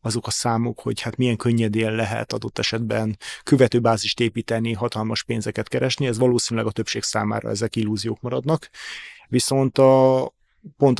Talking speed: 140 wpm